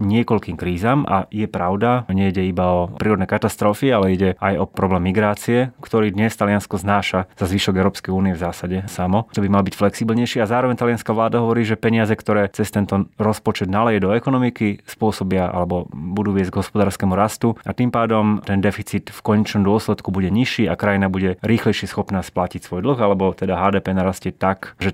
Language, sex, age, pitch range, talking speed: Slovak, male, 30-49, 95-110 Hz, 185 wpm